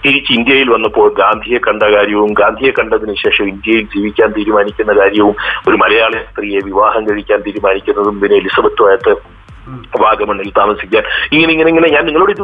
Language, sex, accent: Malayalam, male, native